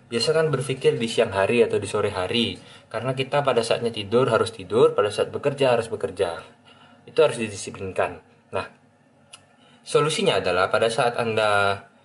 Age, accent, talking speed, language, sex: 20-39, native, 150 wpm, Indonesian, male